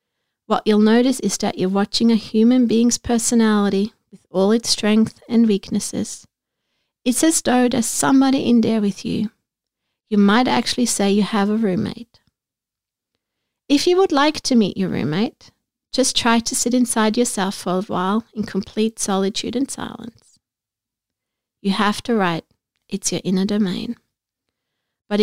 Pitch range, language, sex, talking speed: 205-255 Hz, English, female, 155 wpm